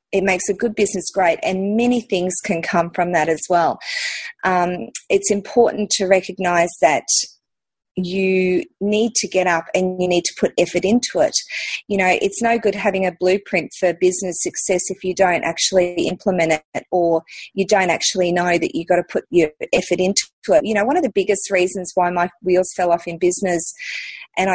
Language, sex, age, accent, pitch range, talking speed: English, female, 30-49, Australian, 180-225 Hz, 195 wpm